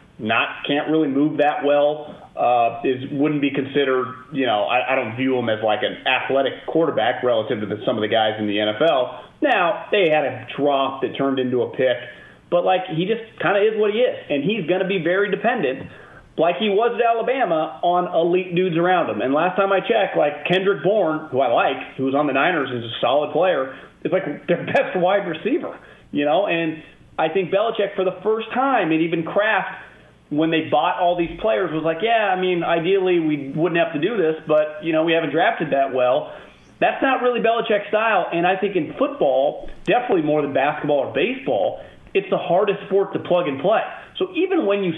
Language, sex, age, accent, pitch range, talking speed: English, male, 30-49, American, 145-200 Hz, 215 wpm